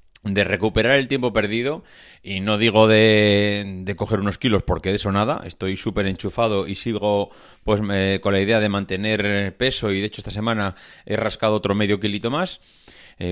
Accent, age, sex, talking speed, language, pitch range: Spanish, 30-49, male, 190 wpm, Spanish, 100-125 Hz